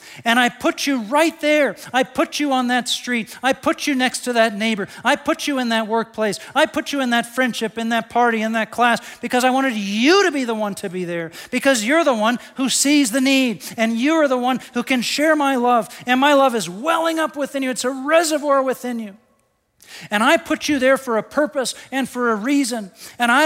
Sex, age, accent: male, 40-59, American